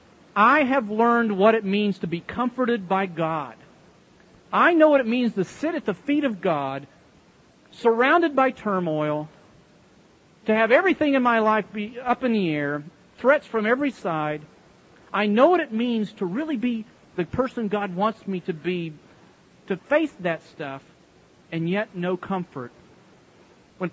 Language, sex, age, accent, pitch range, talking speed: English, male, 40-59, American, 160-225 Hz, 165 wpm